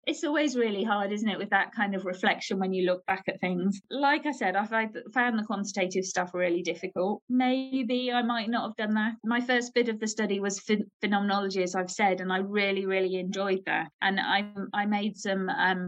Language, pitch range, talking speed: English, 190-220 Hz, 215 wpm